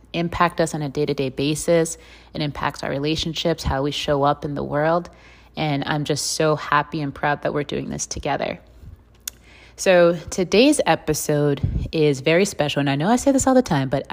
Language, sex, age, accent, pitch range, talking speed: English, female, 20-39, American, 145-165 Hz, 190 wpm